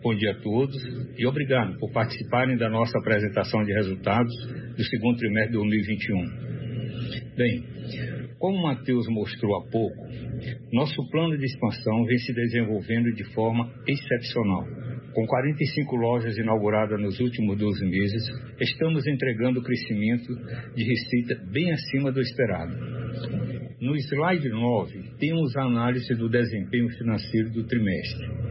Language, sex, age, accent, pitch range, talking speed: Portuguese, male, 60-79, Brazilian, 115-130 Hz, 135 wpm